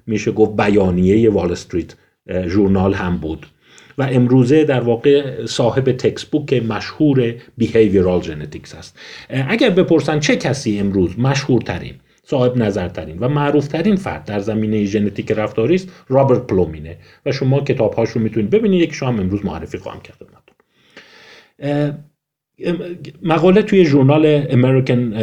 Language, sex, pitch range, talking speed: Persian, male, 95-140 Hz, 125 wpm